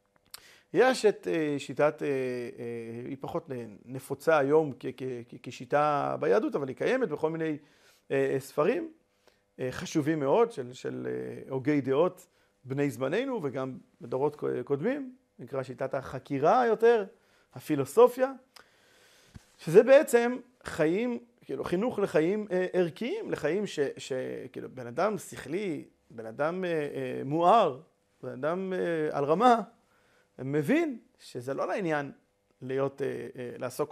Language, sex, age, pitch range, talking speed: Hebrew, male, 40-59, 130-195 Hz, 100 wpm